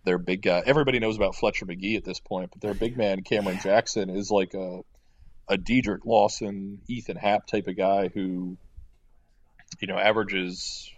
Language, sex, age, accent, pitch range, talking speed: English, male, 30-49, American, 90-105 Hz, 175 wpm